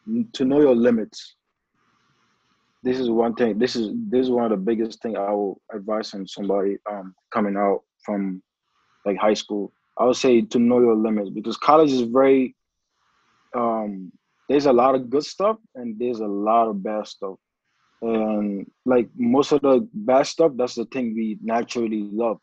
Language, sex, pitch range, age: English, male, 110-135 Hz, 20-39